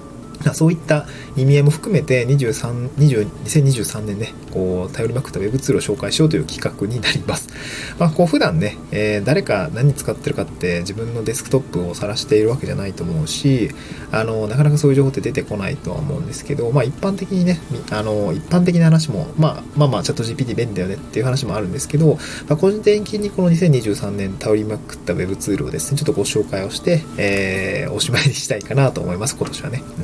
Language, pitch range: Japanese, 110-150 Hz